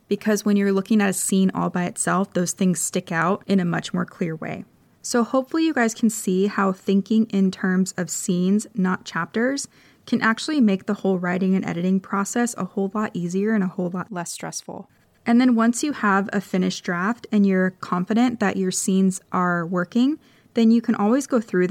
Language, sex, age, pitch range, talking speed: English, female, 20-39, 180-215 Hz, 205 wpm